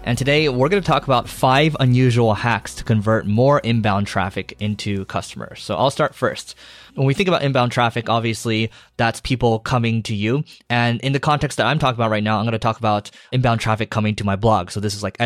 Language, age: English, 20-39